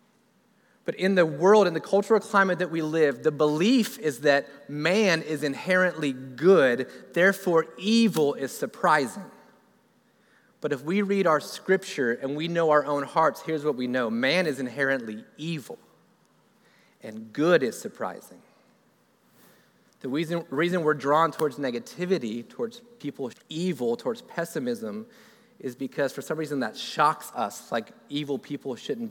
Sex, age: male, 30-49